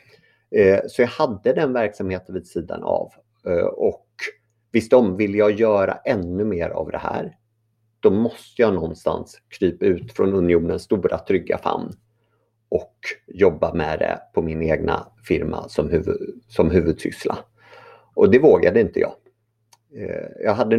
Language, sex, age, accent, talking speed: Swedish, male, 30-49, native, 135 wpm